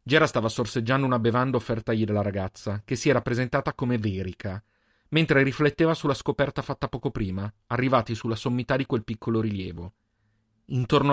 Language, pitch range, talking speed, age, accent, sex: Italian, 110-135 Hz, 155 wpm, 40-59, native, male